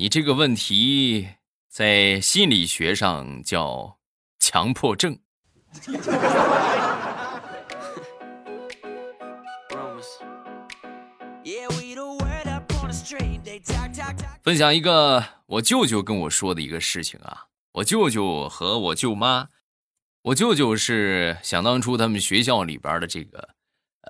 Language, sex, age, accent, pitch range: Chinese, male, 20-39, native, 85-145 Hz